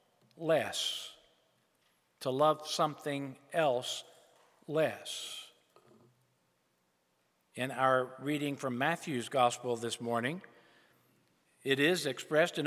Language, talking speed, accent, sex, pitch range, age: English, 85 wpm, American, male, 135-165 Hz, 50-69